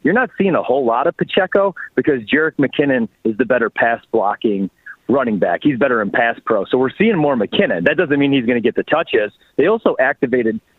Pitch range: 120-160 Hz